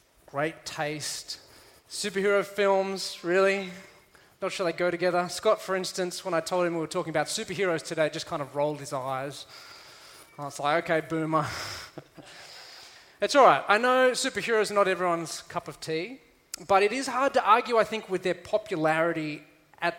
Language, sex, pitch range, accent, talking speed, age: English, male, 155-195 Hz, Australian, 170 wpm, 20-39